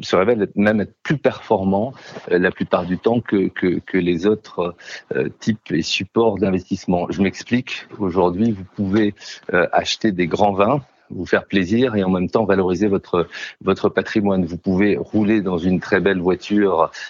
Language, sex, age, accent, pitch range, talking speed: French, male, 40-59, French, 90-110 Hz, 165 wpm